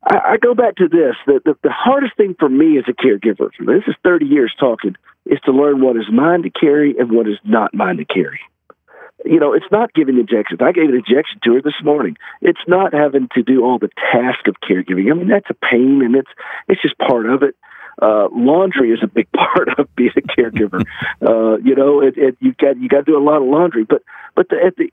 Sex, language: male, English